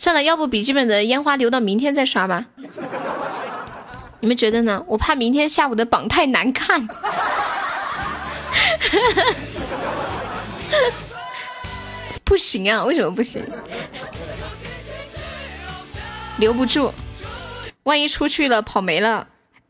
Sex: female